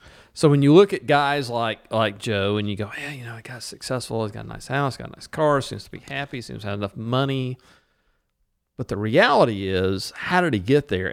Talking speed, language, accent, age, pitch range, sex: 245 wpm, English, American, 40-59, 110-145 Hz, male